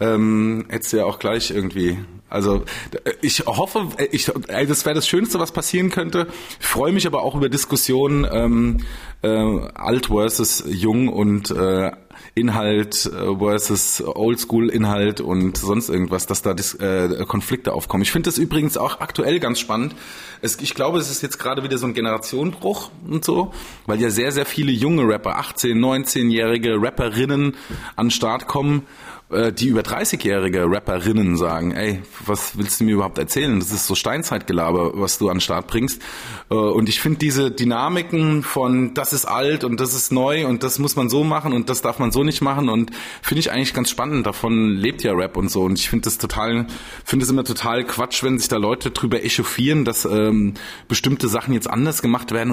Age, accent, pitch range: 20-39, German, 105-135 Hz